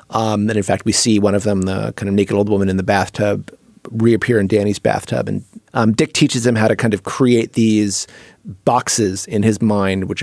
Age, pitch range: 30-49, 100-115 Hz